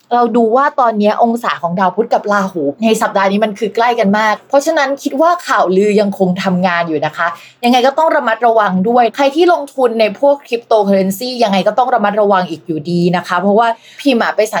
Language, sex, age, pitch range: Thai, female, 20-39, 190-260 Hz